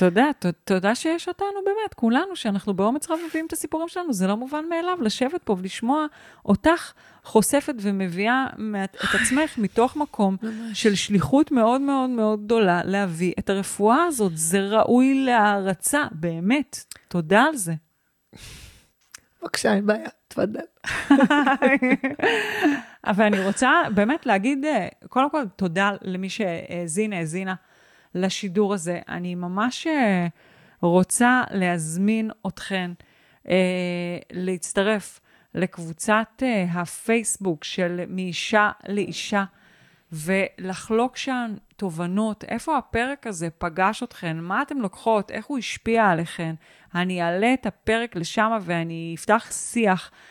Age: 30-49